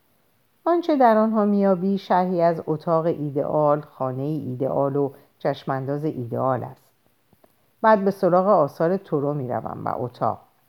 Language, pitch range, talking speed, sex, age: Persian, 135-185 Hz, 125 wpm, female, 50-69